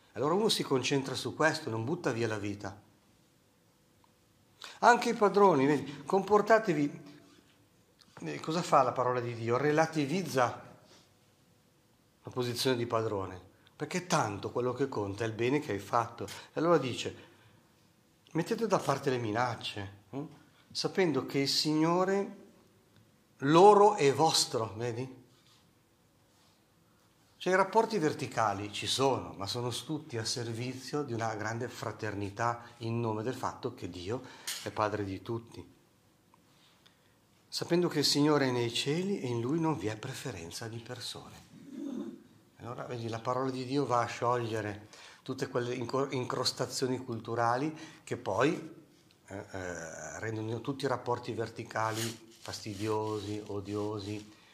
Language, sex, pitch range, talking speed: Italian, male, 110-145 Hz, 130 wpm